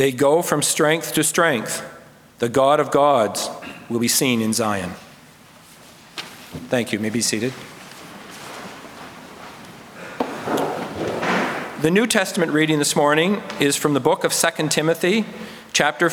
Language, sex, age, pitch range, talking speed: English, male, 40-59, 135-170 Hz, 130 wpm